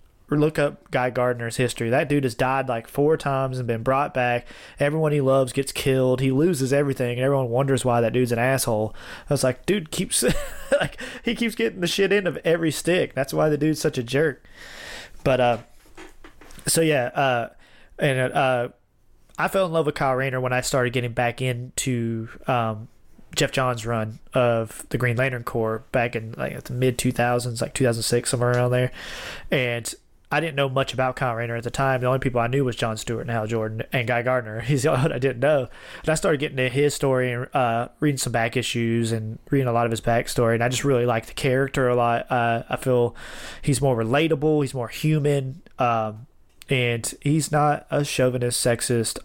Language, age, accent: English, 20-39, American